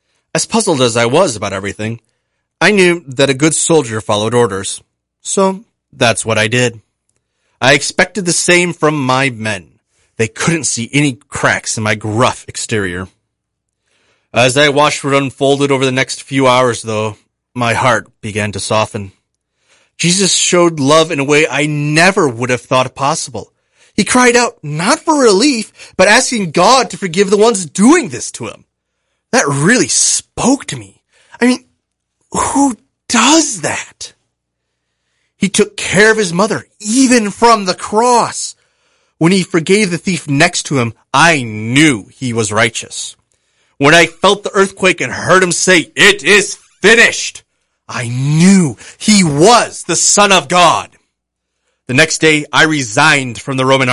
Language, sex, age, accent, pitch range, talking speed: English, male, 30-49, American, 120-190 Hz, 160 wpm